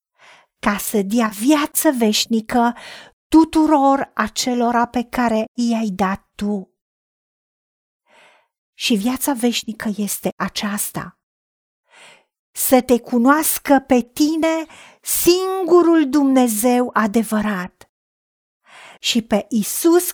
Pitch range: 220-290 Hz